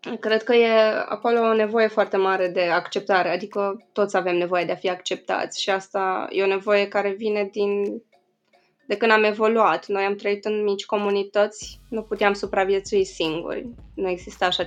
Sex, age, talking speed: female, 20-39, 175 wpm